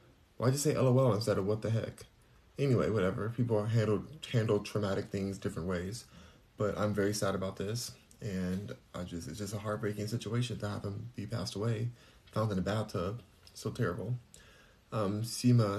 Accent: American